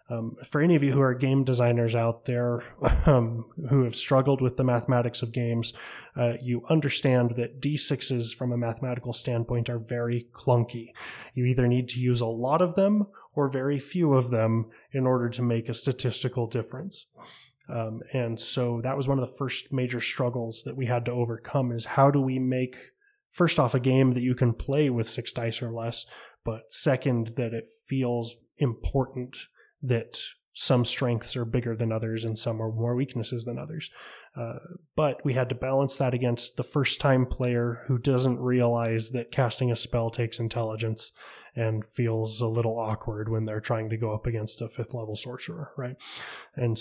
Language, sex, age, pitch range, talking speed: English, male, 20-39, 115-135 Hz, 185 wpm